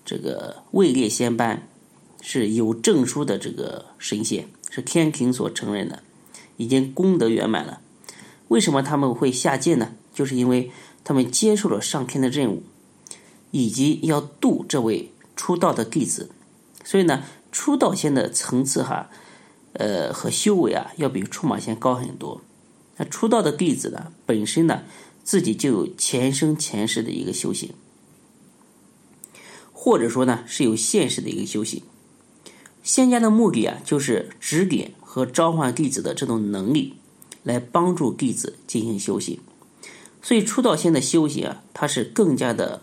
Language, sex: Chinese, male